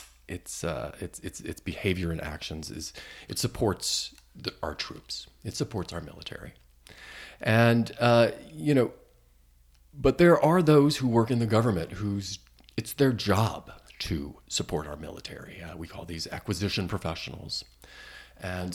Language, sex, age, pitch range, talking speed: English, male, 40-59, 80-115 Hz, 145 wpm